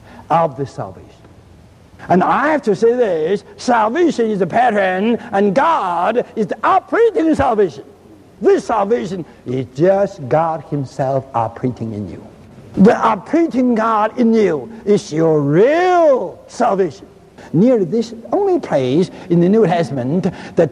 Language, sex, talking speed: English, male, 135 wpm